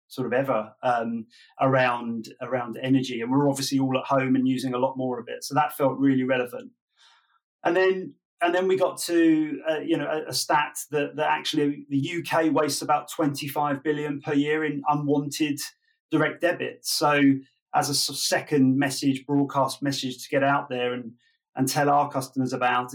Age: 30-49